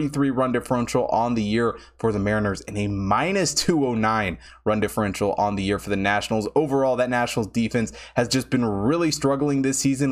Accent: American